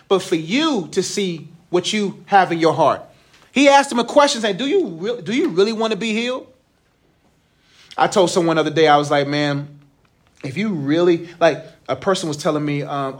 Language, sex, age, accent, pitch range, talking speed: English, male, 30-49, American, 155-230 Hz, 210 wpm